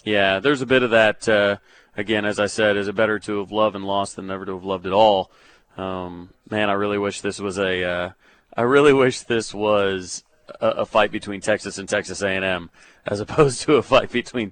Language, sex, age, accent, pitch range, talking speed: English, male, 30-49, American, 100-125 Hz, 225 wpm